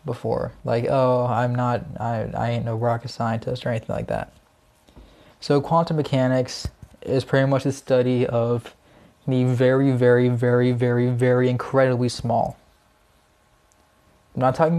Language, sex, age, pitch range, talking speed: English, male, 20-39, 120-140 Hz, 140 wpm